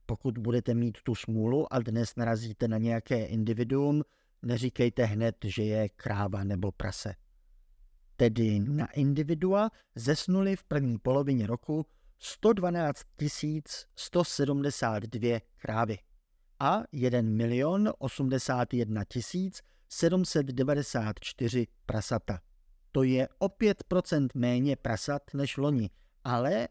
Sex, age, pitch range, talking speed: male, 50-69, 115-165 Hz, 100 wpm